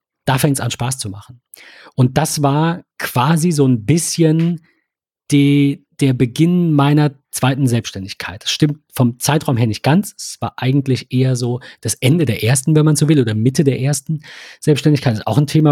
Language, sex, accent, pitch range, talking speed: German, male, German, 120-145 Hz, 185 wpm